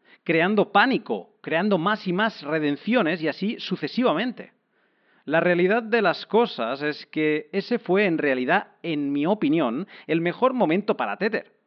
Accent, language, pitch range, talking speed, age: Spanish, Spanish, 140-215 Hz, 150 wpm, 40-59